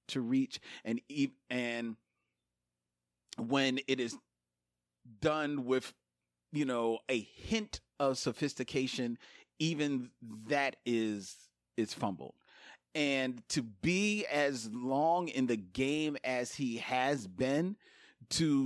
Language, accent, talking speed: English, American, 110 wpm